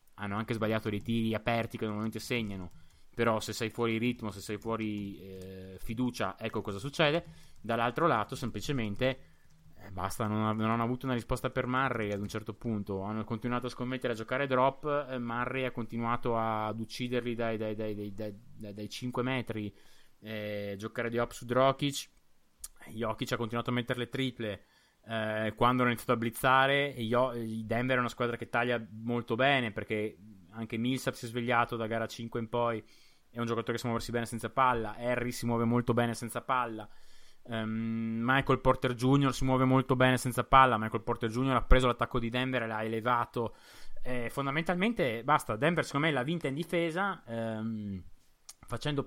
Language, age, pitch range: Italian, 20-39, 110-130 Hz